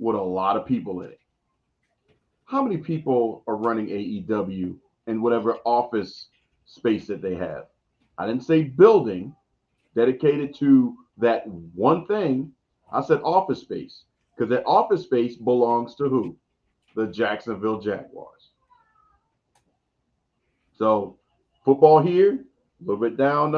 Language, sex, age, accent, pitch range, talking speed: English, male, 40-59, American, 110-155 Hz, 125 wpm